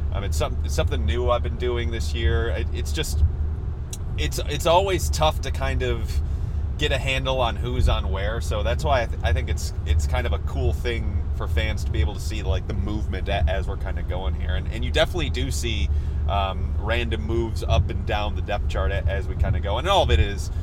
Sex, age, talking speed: male, 30-49, 235 wpm